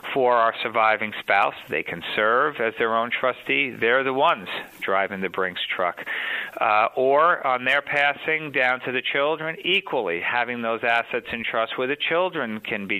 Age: 50-69